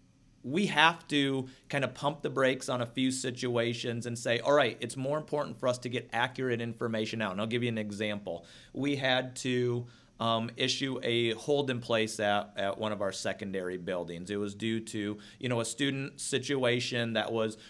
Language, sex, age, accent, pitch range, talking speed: English, male, 40-59, American, 115-145 Hz, 200 wpm